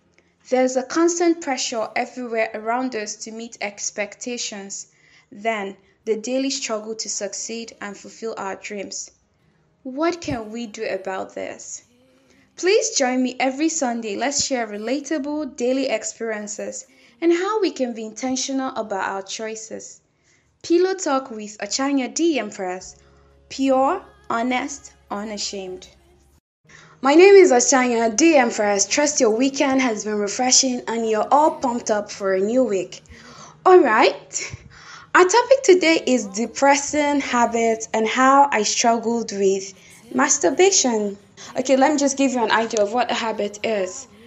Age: 10-29